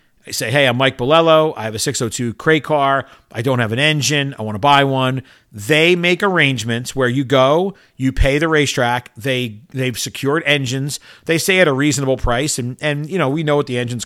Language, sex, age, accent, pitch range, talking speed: English, male, 40-59, American, 125-155 Hz, 220 wpm